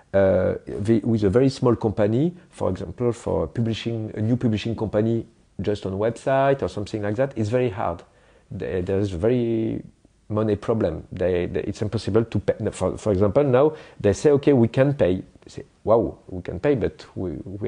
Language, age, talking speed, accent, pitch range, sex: English, 40-59, 190 wpm, French, 105-125 Hz, male